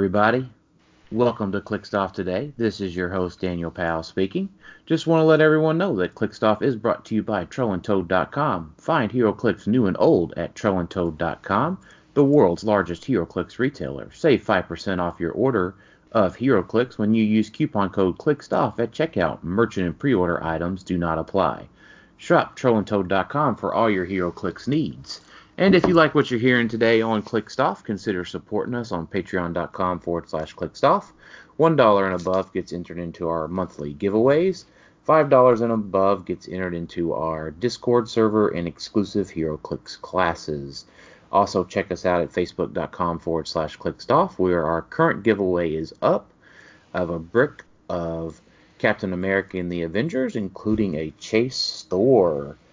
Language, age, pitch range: English, 30-49, 85-110 Hz